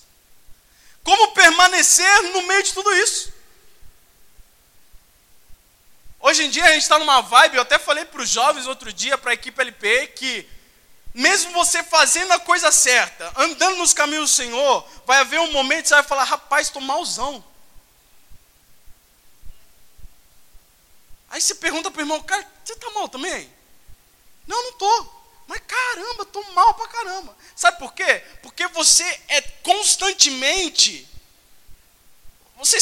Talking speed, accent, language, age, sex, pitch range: 145 wpm, Brazilian, Portuguese, 20-39, male, 290-380 Hz